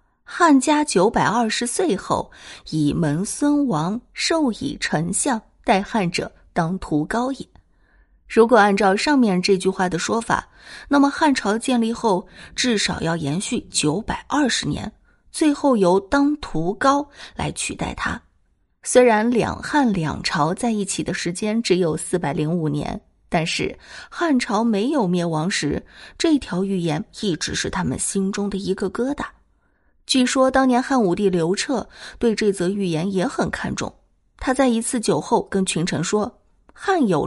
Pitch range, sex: 185-260 Hz, female